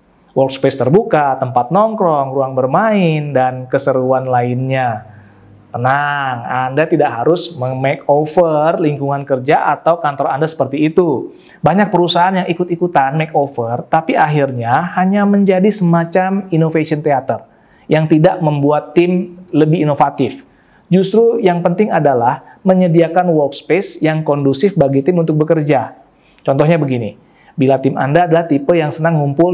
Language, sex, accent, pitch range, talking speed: Indonesian, male, native, 130-175 Hz, 125 wpm